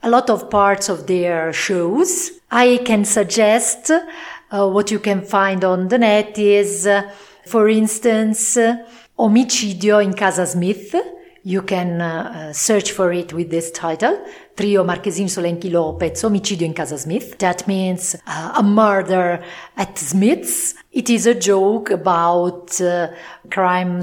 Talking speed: 140 wpm